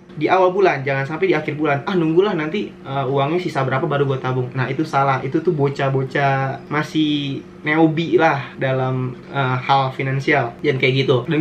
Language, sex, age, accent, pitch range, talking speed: Indonesian, male, 20-39, native, 135-165 Hz, 185 wpm